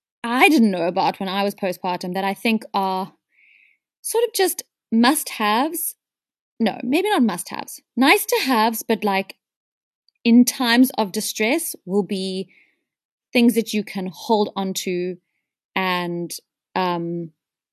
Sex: female